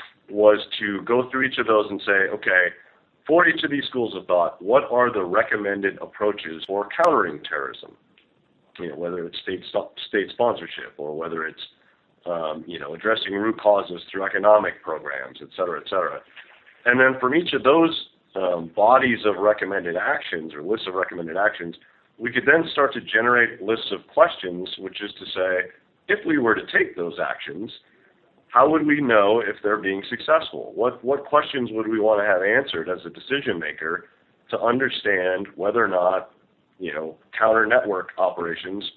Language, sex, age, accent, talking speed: English, male, 50-69, American, 180 wpm